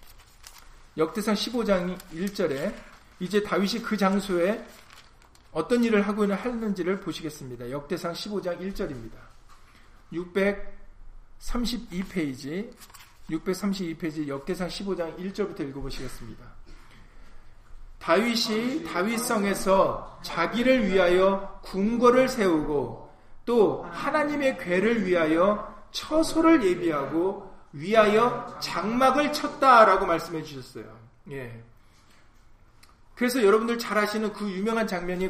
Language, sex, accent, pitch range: Korean, male, native, 165-235 Hz